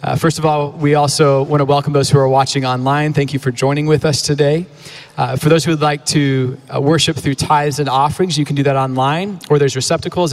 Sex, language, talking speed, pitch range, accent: male, English, 245 wpm, 135-165 Hz, American